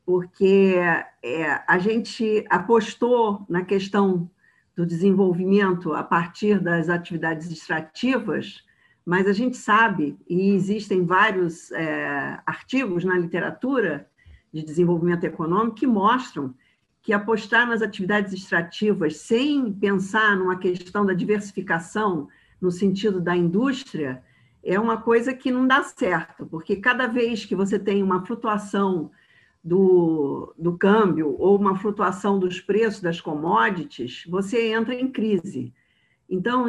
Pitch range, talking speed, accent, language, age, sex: 180-230 Hz, 120 wpm, Brazilian, Portuguese, 50-69, female